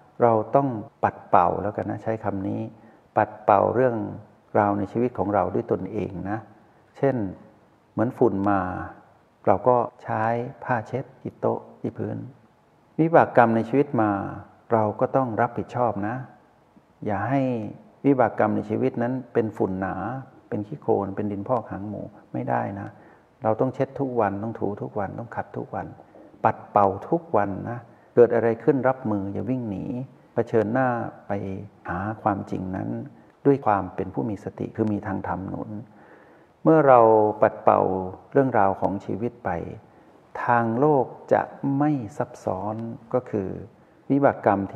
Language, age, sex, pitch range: Thai, 60-79, male, 100-125 Hz